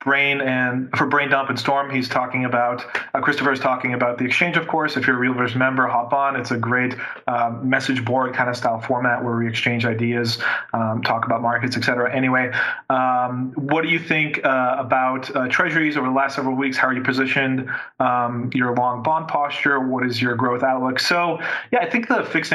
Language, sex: English, male